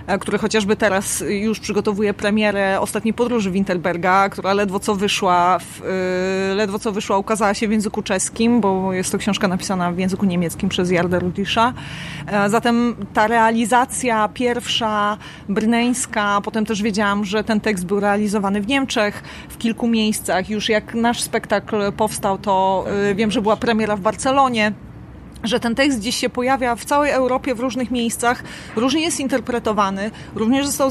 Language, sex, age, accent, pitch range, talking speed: Polish, female, 30-49, native, 200-235 Hz, 155 wpm